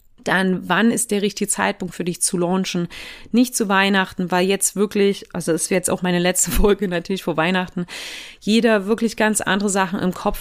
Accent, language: German, German